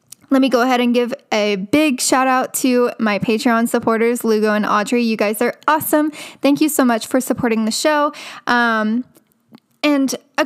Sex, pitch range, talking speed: female, 220-285 Hz, 185 wpm